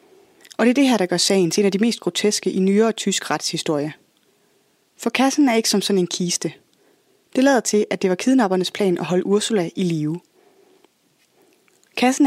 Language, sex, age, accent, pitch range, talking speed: Danish, female, 20-39, native, 175-255 Hz, 195 wpm